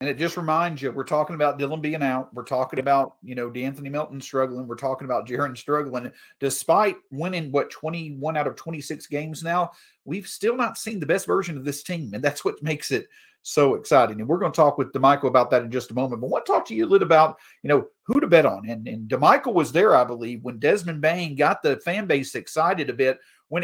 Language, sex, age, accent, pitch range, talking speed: English, male, 40-59, American, 135-185 Hz, 250 wpm